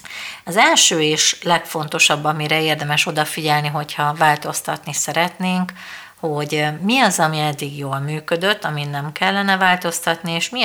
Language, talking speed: Hungarian, 130 wpm